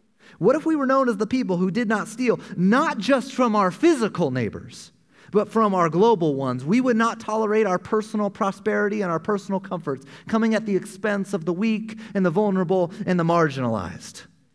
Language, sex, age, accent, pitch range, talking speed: English, male, 30-49, American, 170-225 Hz, 195 wpm